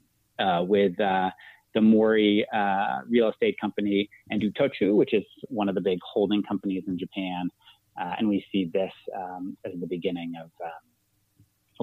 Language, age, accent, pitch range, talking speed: English, 30-49, American, 90-110 Hz, 165 wpm